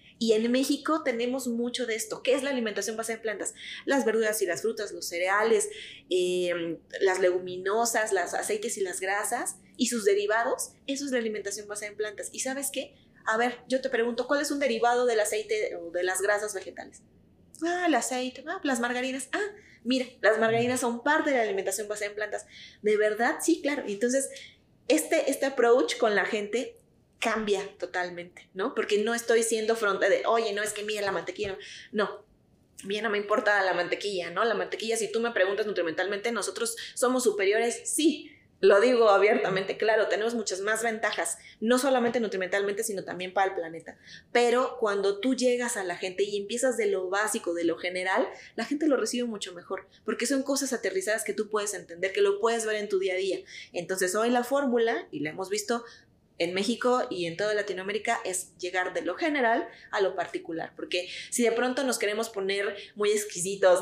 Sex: female